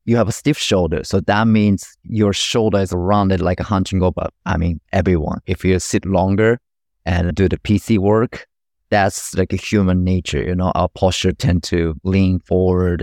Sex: male